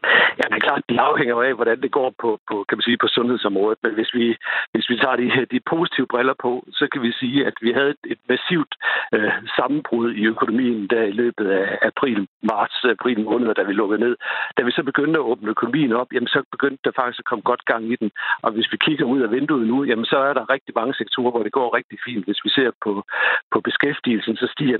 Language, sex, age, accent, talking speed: Danish, male, 60-79, native, 240 wpm